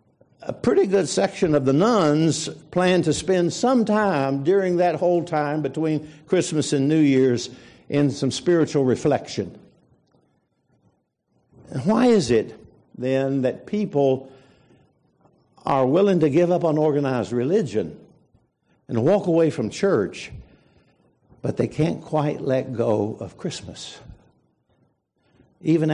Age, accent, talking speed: 60-79, American, 125 wpm